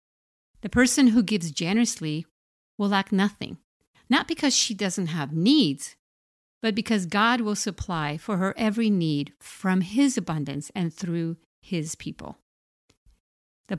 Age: 50-69